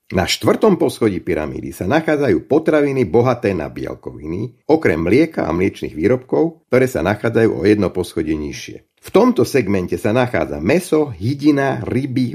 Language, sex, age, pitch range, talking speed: Slovak, male, 50-69, 110-155 Hz, 145 wpm